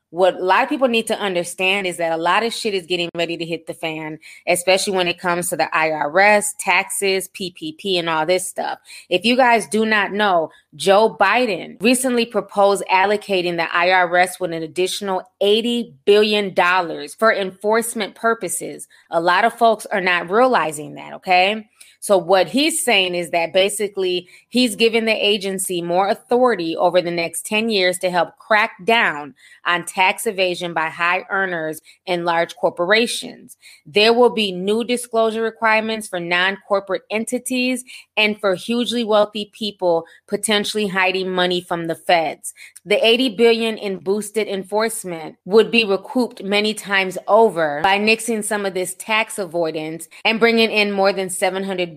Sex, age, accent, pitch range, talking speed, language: female, 20-39, American, 175-220 Hz, 165 wpm, English